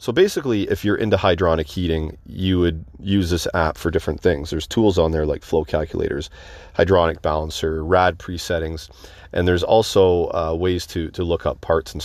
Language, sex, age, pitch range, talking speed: English, male, 40-59, 80-95 Hz, 185 wpm